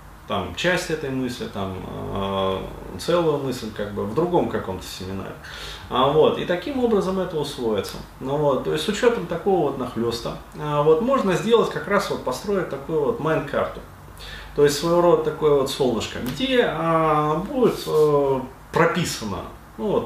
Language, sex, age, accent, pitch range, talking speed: Russian, male, 30-49, native, 115-175 Hz, 150 wpm